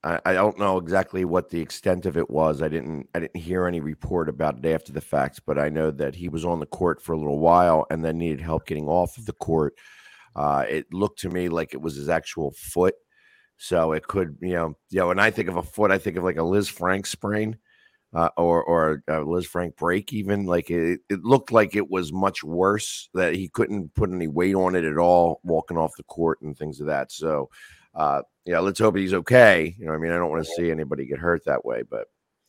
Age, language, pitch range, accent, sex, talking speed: 50-69, English, 80-95 Hz, American, male, 250 wpm